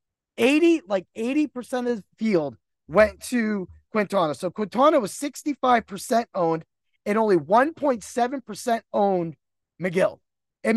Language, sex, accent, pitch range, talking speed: English, male, American, 200-275 Hz, 110 wpm